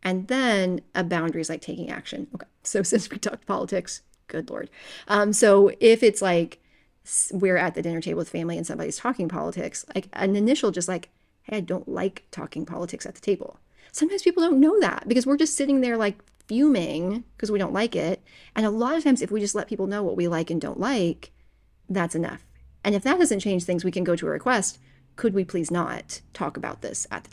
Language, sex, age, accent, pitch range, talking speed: English, female, 30-49, American, 175-215 Hz, 225 wpm